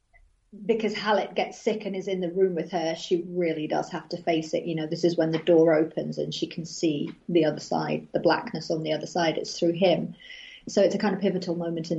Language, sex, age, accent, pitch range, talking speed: English, female, 40-59, British, 165-195 Hz, 250 wpm